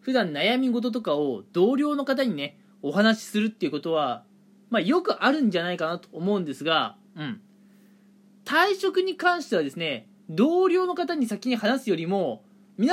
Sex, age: male, 20-39